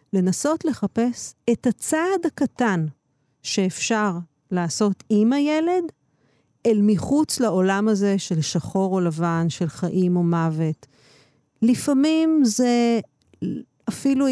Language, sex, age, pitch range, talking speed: Hebrew, female, 40-59, 160-235 Hz, 100 wpm